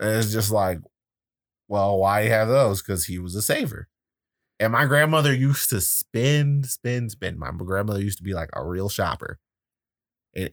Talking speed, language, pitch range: 190 wpm, English, 95-115 Hz